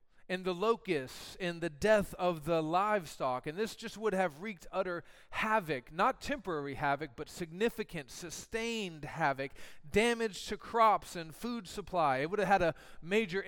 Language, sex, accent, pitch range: English, male, American, 135-190 Hz